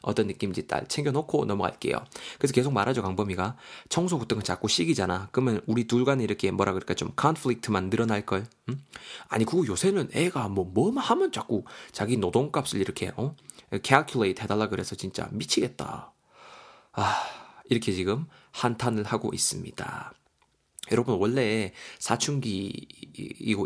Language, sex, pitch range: Korean, male, 105-145 Hz